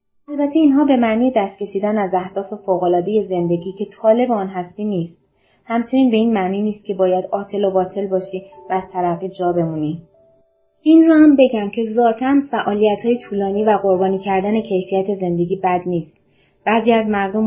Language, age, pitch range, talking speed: Persian, 20-39, 180-220 Hz, 170 wpm